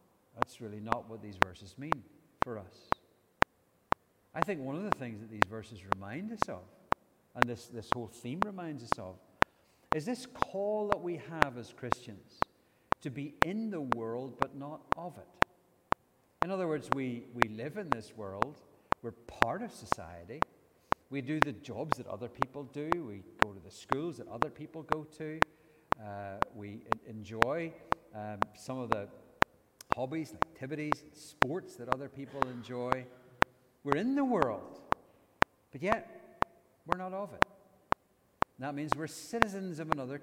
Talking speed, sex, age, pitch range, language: 160 wpm, male, 60-79, 120-155 Hz, English